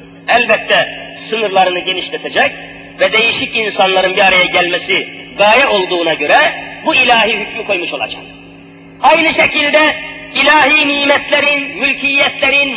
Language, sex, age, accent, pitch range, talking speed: Turkish, male, 40-59, native, 235-280 Hz, 105 wpm